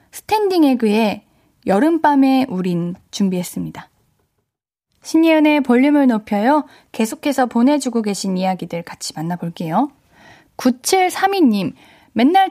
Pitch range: 205-280 Hz